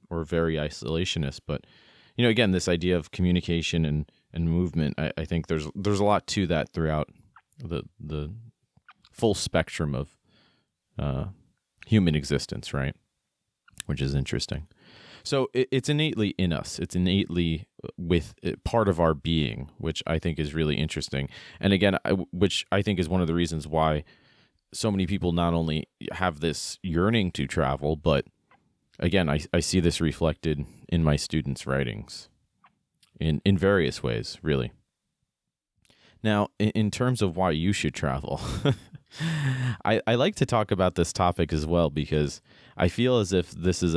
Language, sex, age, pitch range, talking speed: English, male, 30-49, 75-100 Hz, 165 wpm